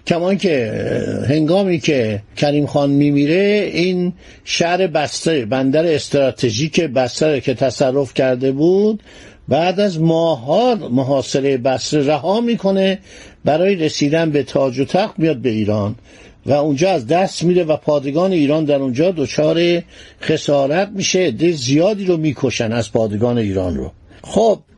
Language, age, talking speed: Persian, 50-69, 135 wpm